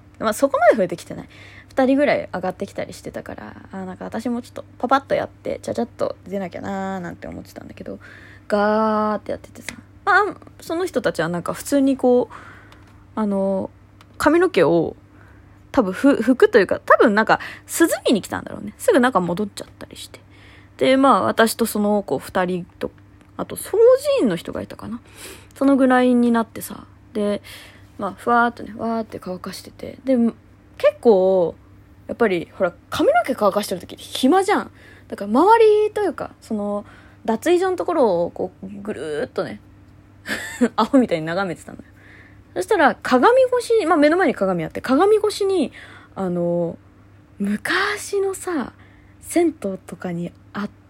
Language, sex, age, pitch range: Japanese, female, 20-39, 185-290 Hz